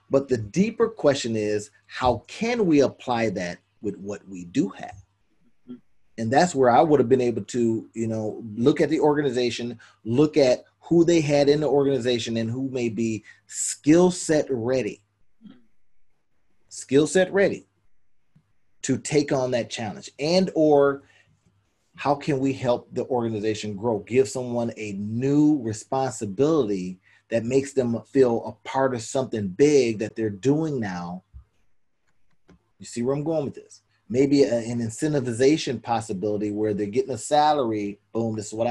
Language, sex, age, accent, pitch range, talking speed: English, male, 30-49, American, 110-145 Hz, 155 wpm